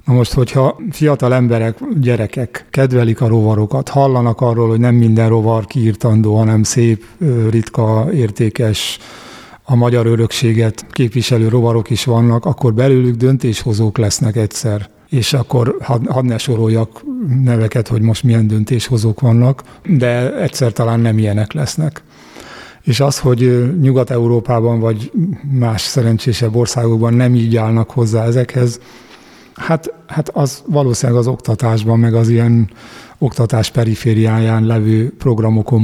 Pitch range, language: 115-130 Hz, Hungarian